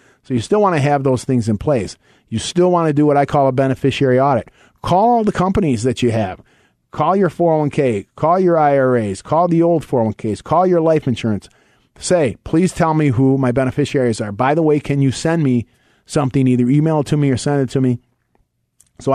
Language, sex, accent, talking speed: English, male, American, 215 wpm